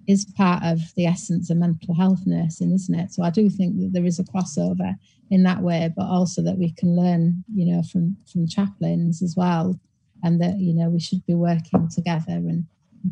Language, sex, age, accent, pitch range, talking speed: English, female, 30-49, British, 175-195 Hz, 215 wpm